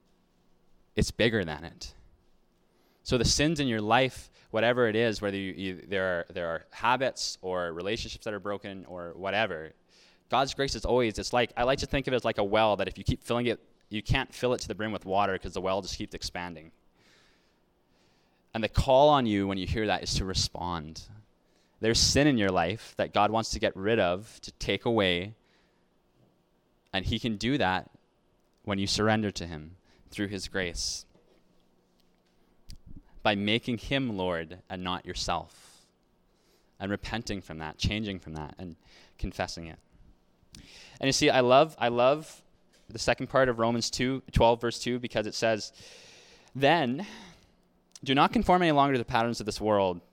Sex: male